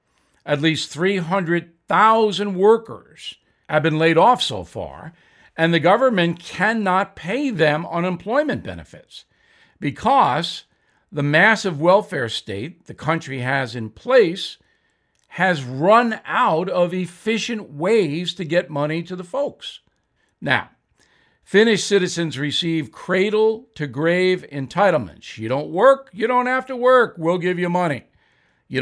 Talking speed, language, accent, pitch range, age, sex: 125 wpm, English, American, 150-205 Hz, 60-79, male